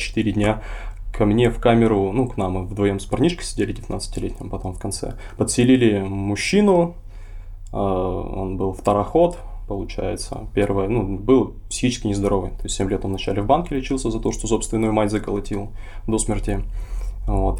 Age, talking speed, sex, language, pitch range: 20-39, 160 wpm, male, Russian, 95-115 Hz